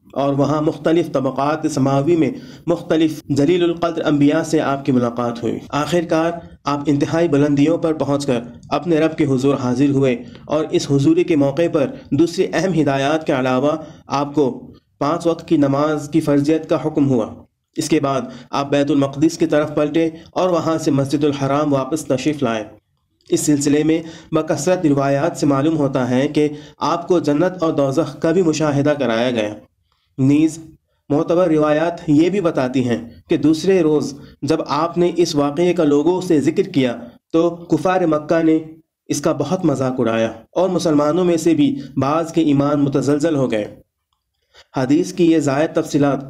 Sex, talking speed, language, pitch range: male, 170 wpm, Urdu, 140-165 Hz